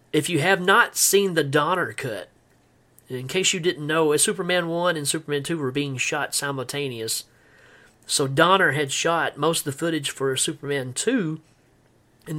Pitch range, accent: 135-160 Hz, American